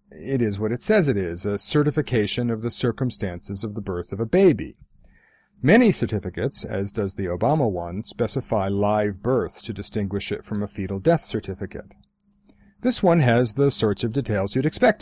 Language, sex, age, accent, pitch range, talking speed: English, male, 40-59, American, 100-145 Hz, 180 wpm